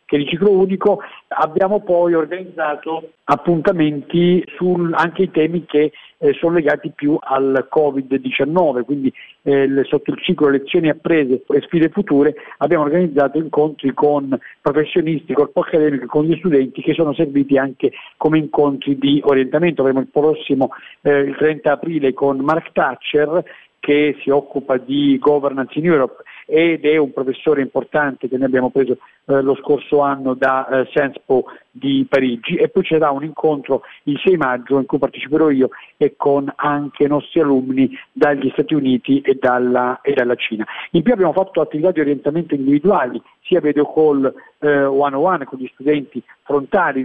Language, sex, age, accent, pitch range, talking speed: Italian, male, 50-69, native, 135-160 Hz, 165 wpm